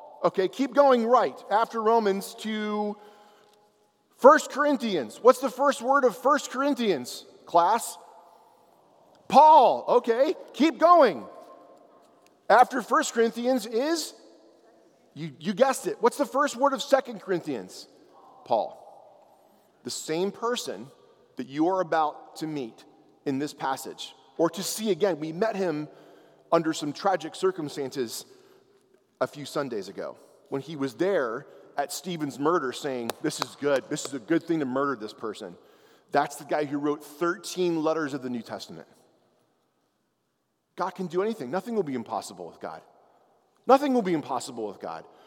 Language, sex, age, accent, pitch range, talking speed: English, male, 40-59, American, 160-255 Hz, 145 wpm